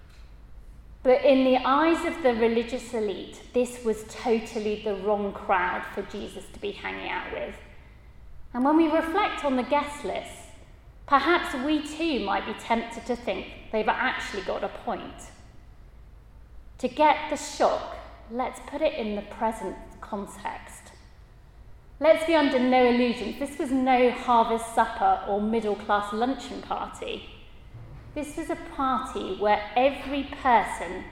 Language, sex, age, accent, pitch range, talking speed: English, female, 30-49, British, 205-270 Hz, 145 wpm